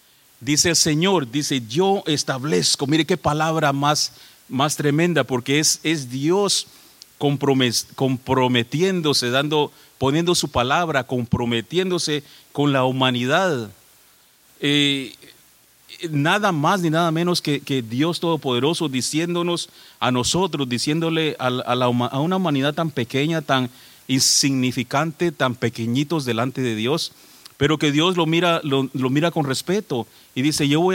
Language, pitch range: English, 130-165 Hz